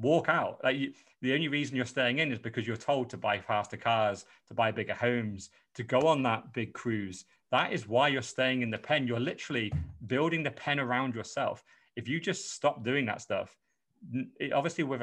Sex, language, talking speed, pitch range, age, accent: male, English, 205 wpm, 105-125 Hz, 30-49, British